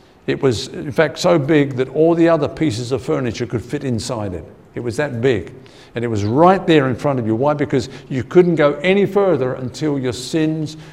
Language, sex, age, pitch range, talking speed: English, male, 50-69, 125-150 Hz, 220 wpm